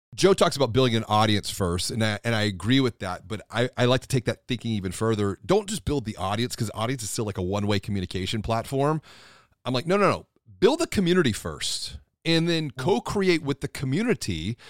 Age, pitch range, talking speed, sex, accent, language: 30-49, 100-130 Hz, 215 wpm, male, American, English